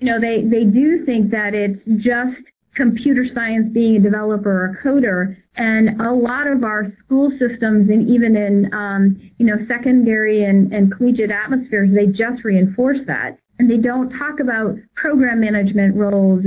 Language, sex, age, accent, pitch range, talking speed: English, female, 40-59, American, 205-255 Hz, 170 wpm